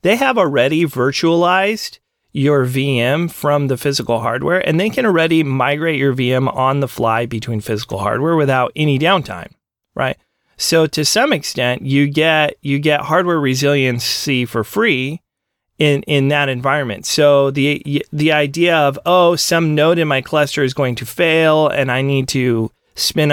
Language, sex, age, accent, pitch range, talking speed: English, male, 30-49, American, 130-155 Hz, 160 wpm